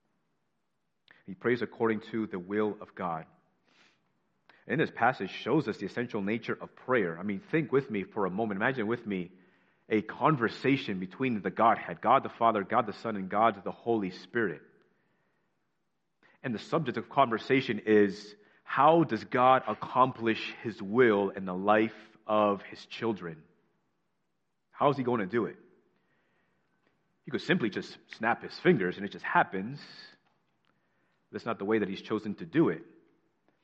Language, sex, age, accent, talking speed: English, male, 30-49, American, 160 wpm